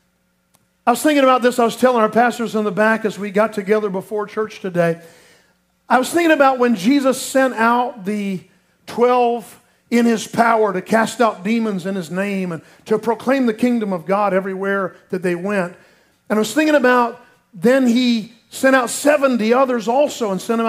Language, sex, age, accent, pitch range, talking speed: English, male, 50-69, American, 210-260 Hz, 190 wpm